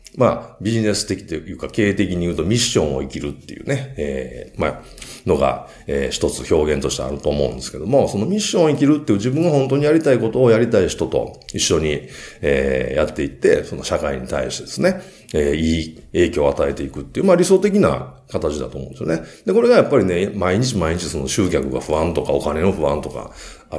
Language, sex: Japanese, male